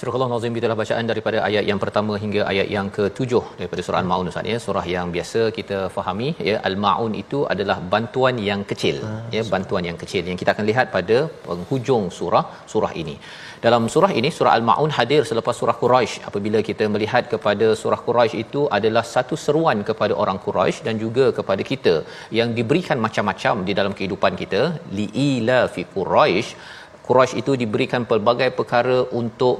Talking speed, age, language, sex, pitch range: 175 wpm, 40-59, Malayalam, male, 105-130 Hz